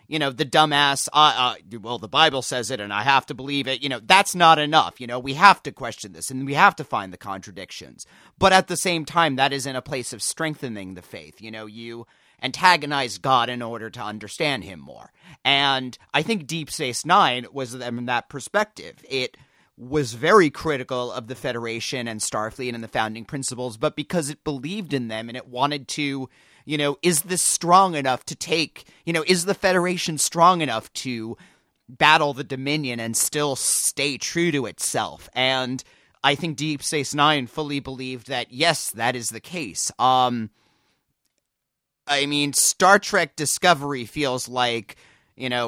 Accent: American